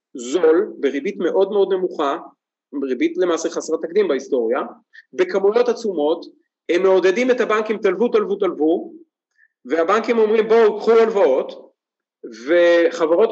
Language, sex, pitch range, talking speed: Hebrew, male, 160-230 Hz, 115 wpm